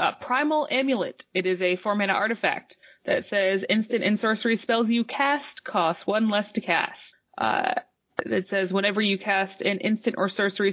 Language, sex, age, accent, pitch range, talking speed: English, female, 20-39, American, 190-235 Hz, 175 wpm